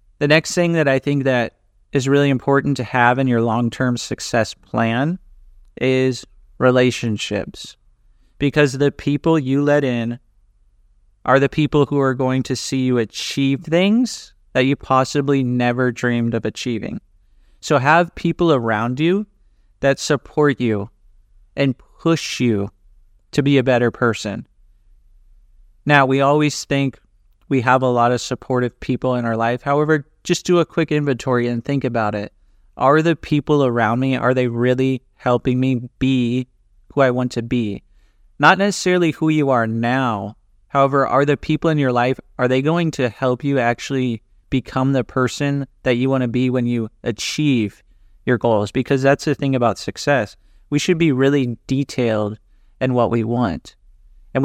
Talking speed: 165 wpm